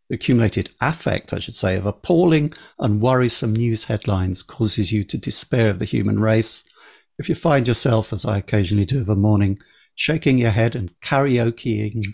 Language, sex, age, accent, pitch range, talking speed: English, male, 50-69, British, 100-125 Hz, 175 wpm